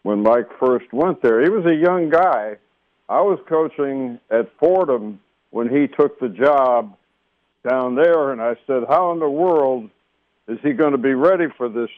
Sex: male